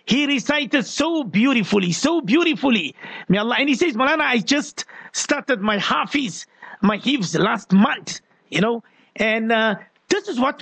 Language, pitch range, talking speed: English, 205-285 Hz, 160 wpm